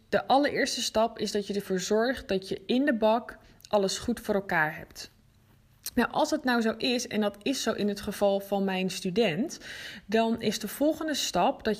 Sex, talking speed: female, 205 wpm